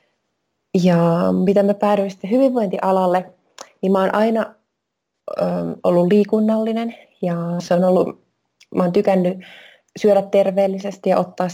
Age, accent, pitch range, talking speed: 20-39, native, 185-220 Hz, 125 wpm